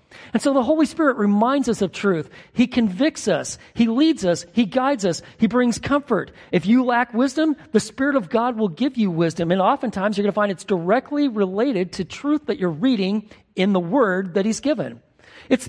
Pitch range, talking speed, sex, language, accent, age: 180-255 Hz, 205 wpm, male, English, American, 40-59